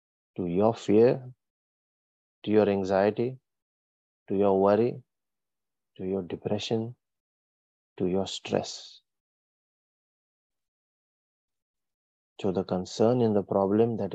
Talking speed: 95 wpm